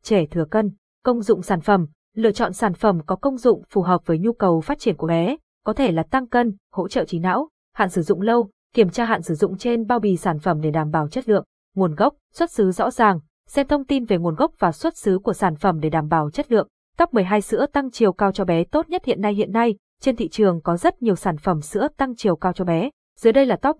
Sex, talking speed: female, 265 wpm